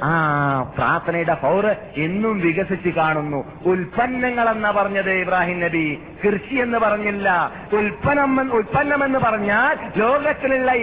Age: 50-69